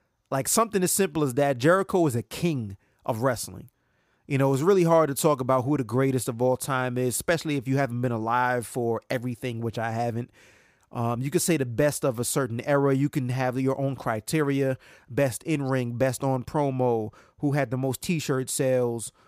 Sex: male